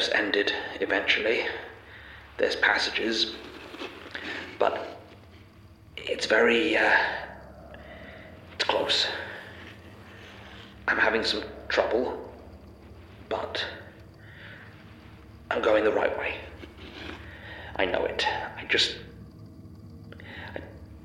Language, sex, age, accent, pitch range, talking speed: English, male, 40-59, British, 90-110 Hz, 75 wpm